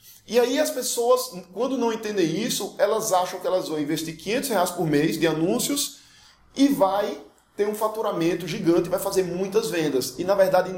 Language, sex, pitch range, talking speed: Portuguese, male, 165-220 Hz, 185 wpm